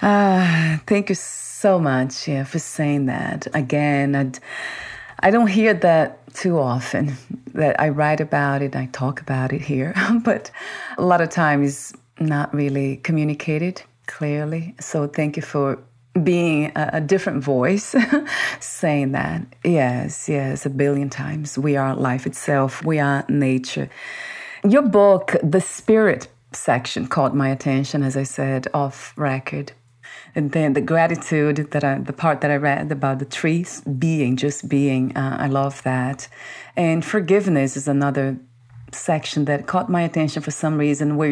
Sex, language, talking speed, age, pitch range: female, English, 155 wpm, 30-49, 140-165 Hz